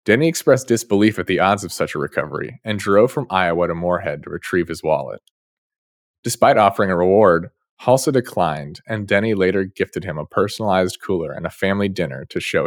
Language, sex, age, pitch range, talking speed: English, male, 30-49, 95-115 Hz, 190 wpm